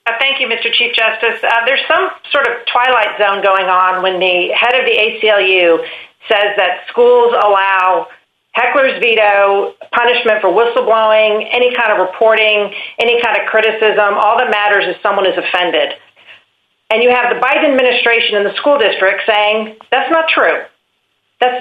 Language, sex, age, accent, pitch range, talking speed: English, female, 40-59, American, 205-270 Hz, 165 wpm